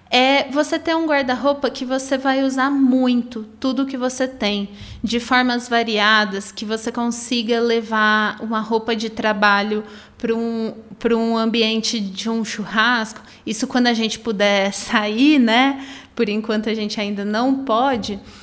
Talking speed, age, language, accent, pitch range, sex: 150 wpm, 20-39, Portuguese, Brazilian, 220-260 Hz, female